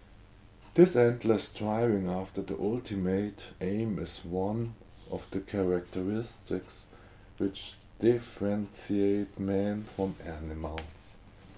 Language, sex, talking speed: German, male, 90 wpm